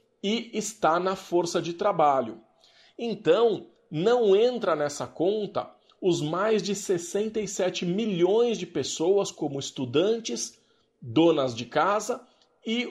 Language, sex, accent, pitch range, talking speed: Portuguese, male, Brazilian, 165-215 Hz, 110 wpm